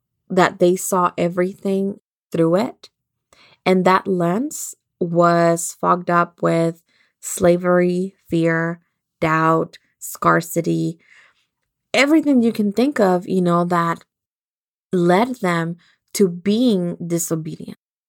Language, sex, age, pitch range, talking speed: English, female, 20-39, 170-200 Hz, 100 wpm